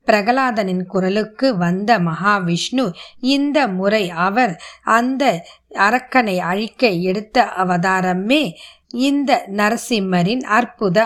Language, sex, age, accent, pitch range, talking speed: Tamil, female, 20-39, native, 195-250 Hz, 55 wpm